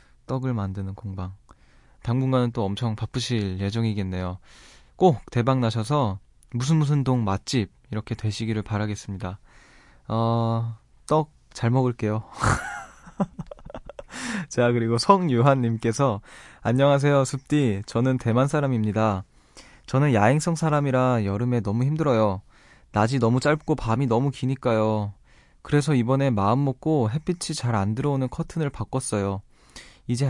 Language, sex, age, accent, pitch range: Korean, male, 20-39, native, 110-140 Hz